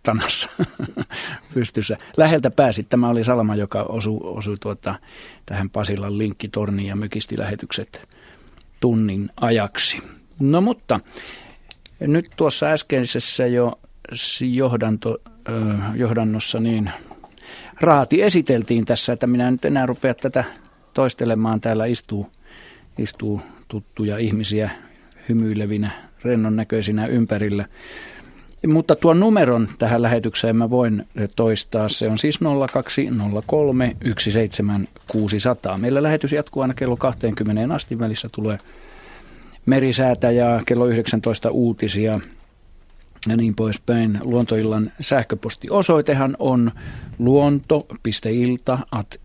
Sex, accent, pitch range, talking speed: male, native, 110-125 Hz, 95 wpm